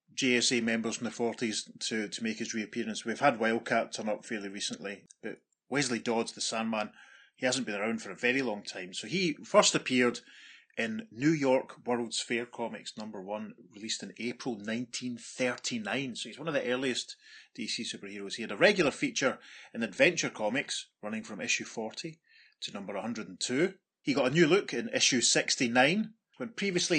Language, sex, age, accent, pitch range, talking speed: English, male, 30-49, British, 115-140 Hz, 200 wpm